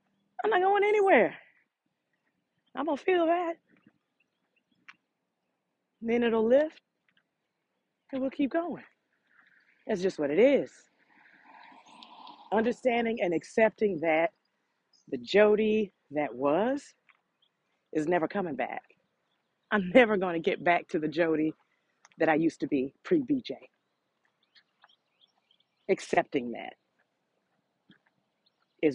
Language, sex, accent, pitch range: English, female, American, 170-270 Hz